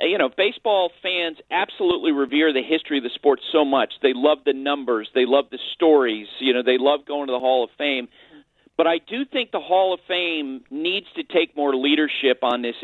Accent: American